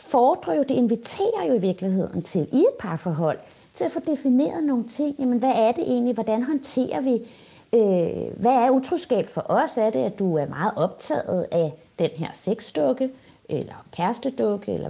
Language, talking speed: Danish, 180 wpm